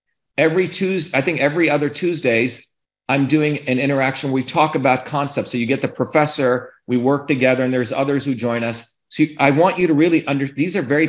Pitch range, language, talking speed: 130-160 Hz, English, 215 wpm